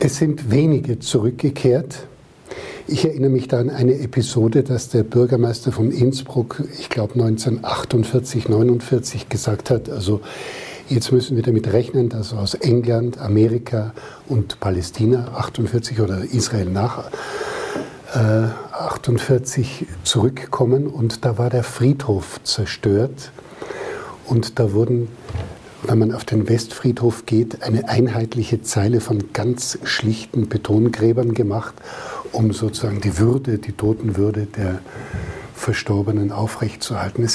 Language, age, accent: German, 50-69, German